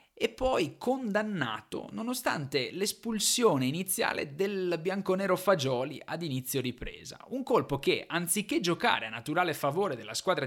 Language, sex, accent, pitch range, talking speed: Italian, male, native, 130-170 Hz, 125 wpm